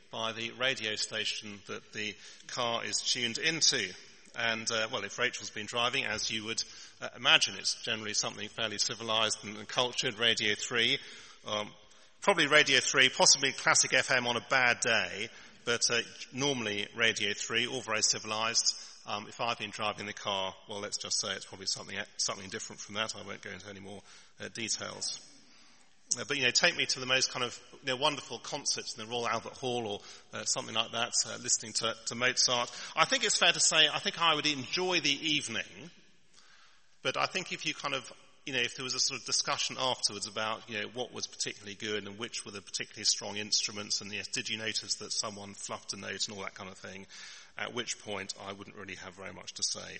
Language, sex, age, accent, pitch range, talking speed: English, male, 40-59, British, 105-130 Hz, 210 wpm